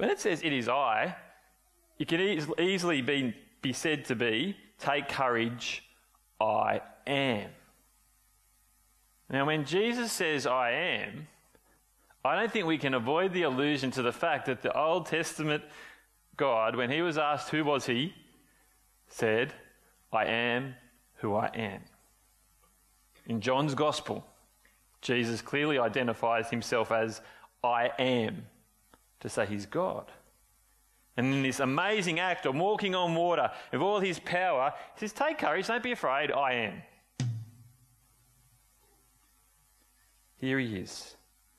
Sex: male